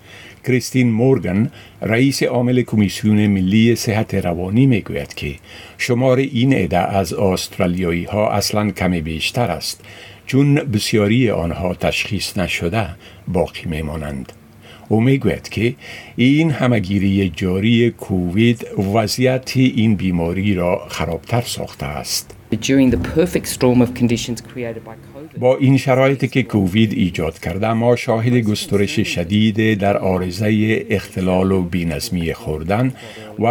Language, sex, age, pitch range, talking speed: Persian, male, 50-69, 95-120 Hz, 105 wpm